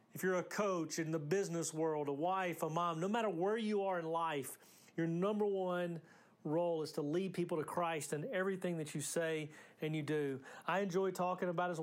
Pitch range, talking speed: 155-190 Hz, 215 wpm